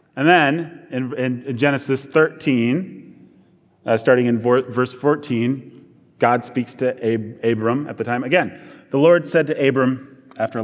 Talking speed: 145 wpm